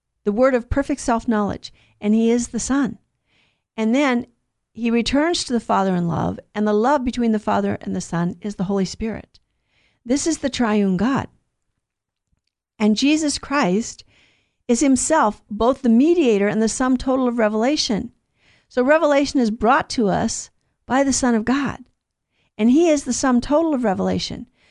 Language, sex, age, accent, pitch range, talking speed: English, female, 50-69, American, 200-265 Hz, 170 wpm